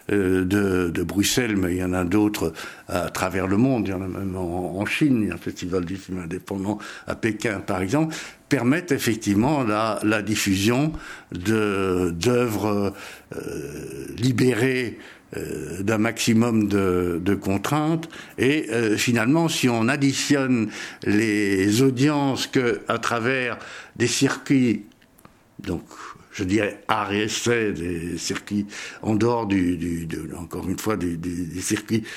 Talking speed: 145 wpm